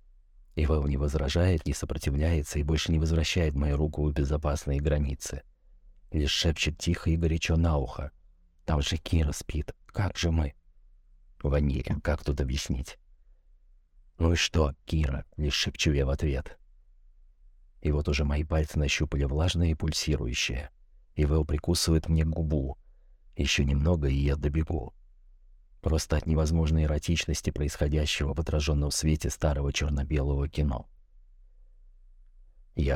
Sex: male